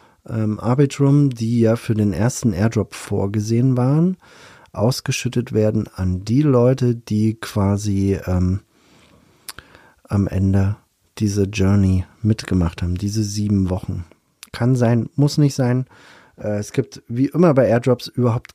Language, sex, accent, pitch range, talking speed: German, male, German, 105-135 Hz, 125 wpm